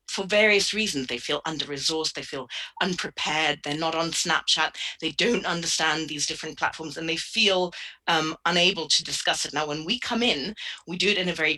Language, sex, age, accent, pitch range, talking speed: English, female, 30-49, British, 155-190 Hz, 195 wpm